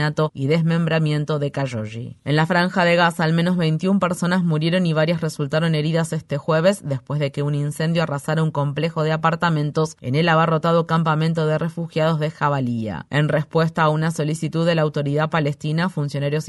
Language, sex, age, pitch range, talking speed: Spanish, female, 20-39, 150-170 Hz, 175 wpm